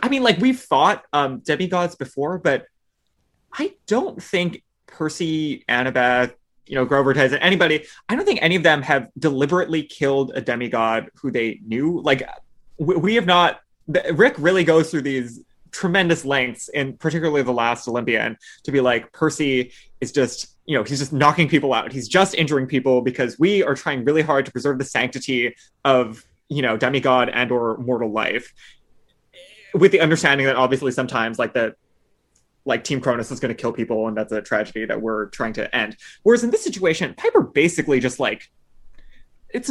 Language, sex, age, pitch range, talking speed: English, male, 20-39, 130-190 Hz, 180 wpm